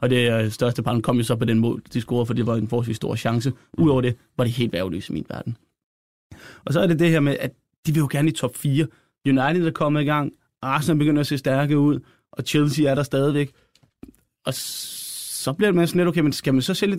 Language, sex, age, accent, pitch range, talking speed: Danish, male, 20-39, native, 125-145 Hz, 250 wpm